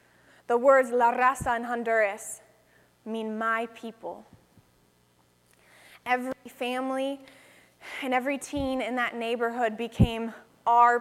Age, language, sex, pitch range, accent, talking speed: 20-39, English, female, 205-245 Hz, American, 105 wpm